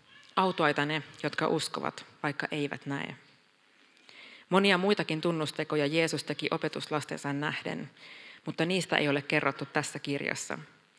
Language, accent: Finnish, native